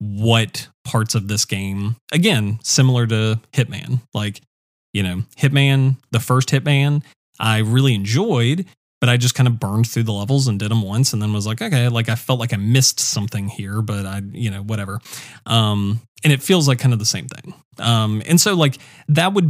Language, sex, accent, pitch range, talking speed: English, male, American, 110-135 Hz, 205 wpm